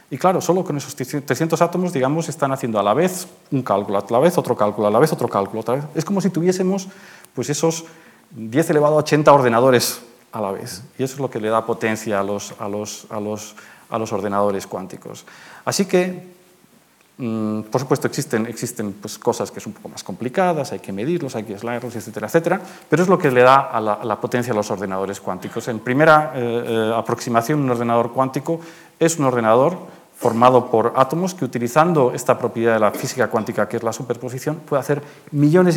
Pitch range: 110-150 Hz